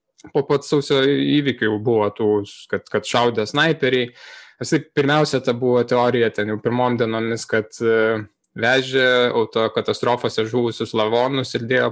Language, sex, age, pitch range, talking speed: English, male, 20-39, 115-140 Hz, 120 wpm